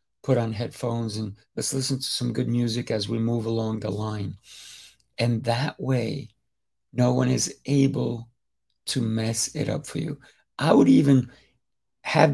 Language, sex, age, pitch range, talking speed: English, male, 50-69, 115-140 Hz, 160 wpm